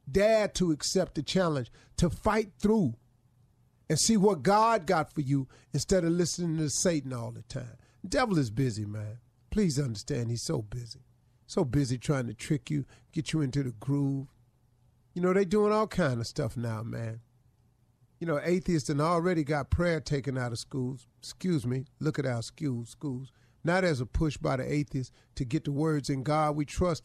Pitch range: 125-180 Hz